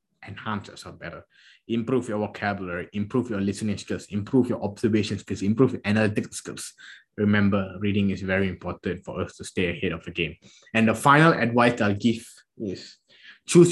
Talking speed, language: 175 wpm, English